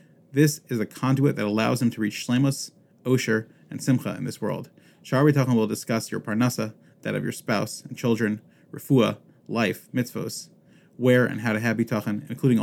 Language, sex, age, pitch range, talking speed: English, male, 30-49, 110-135 Hz, 175 wpm